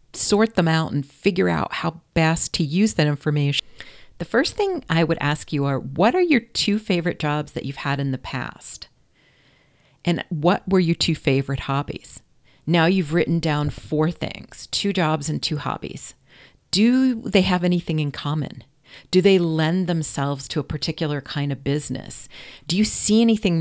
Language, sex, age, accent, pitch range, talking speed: English, female, 40-59, American, 145-185 Hz, 180 wpm